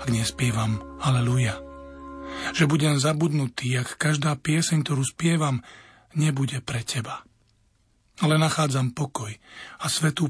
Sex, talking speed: male, 110 wpm